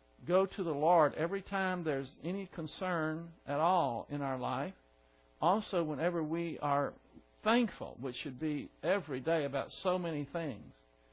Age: 60-79